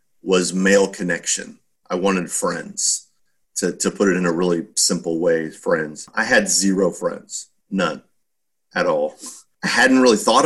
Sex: male